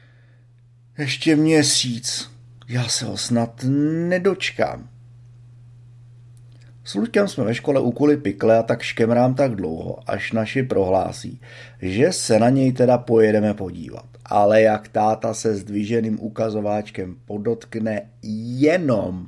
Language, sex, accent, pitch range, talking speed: Czech, male, native, 110-125 Hz, 115 wpm